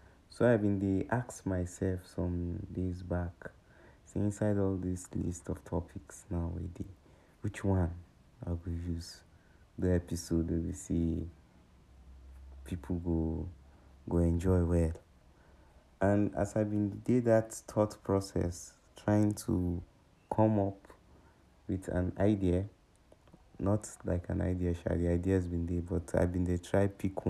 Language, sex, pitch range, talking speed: English, male, 85-105 Hz, 135 wpm